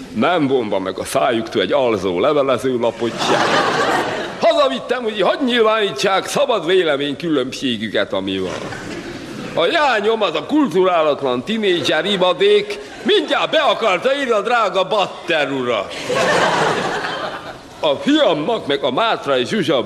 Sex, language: male, Hungarian